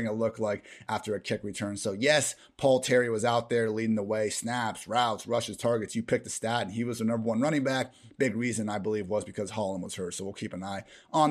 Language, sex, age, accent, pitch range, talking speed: English, male, 30-49, American, 110-130 Hz, 255 wpm